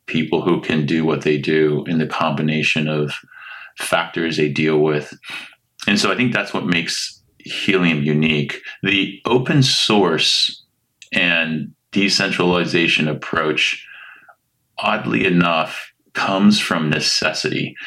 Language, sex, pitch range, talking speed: English, male, 75-95 Hz, 120 wpm